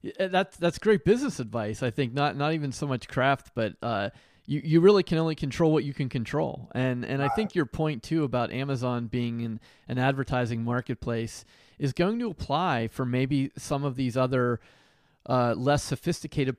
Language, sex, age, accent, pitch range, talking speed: English, male, 30-49, American, 120-145 Hz, 190 wpm